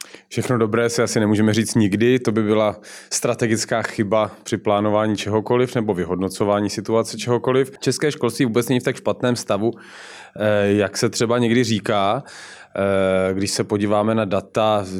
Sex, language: male, Czech